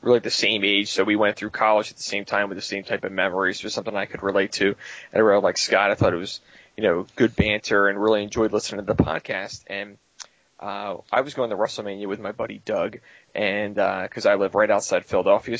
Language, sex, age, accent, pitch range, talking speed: English, male, 20-39, American, 100-115 Hz, 245 wpm